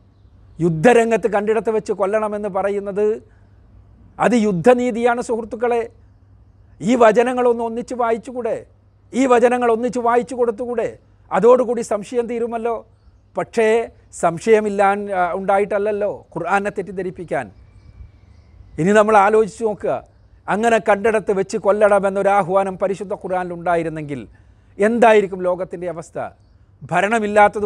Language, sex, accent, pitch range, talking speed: Malayalam, male, native, 150-225 Hz, 90 wpm